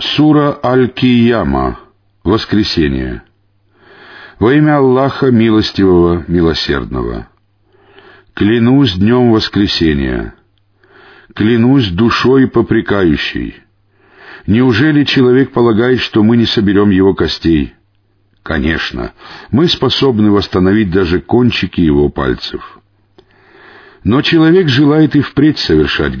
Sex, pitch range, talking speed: male, 95-130 Hz, 85 wpm